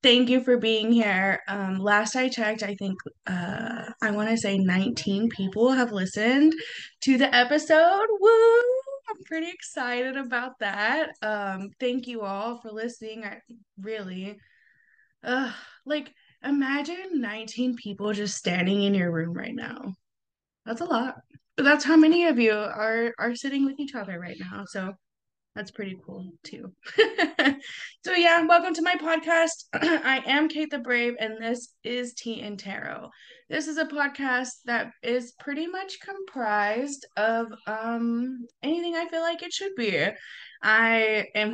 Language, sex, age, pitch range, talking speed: English, female, 20-39, 210-295 Hz, 155 wpm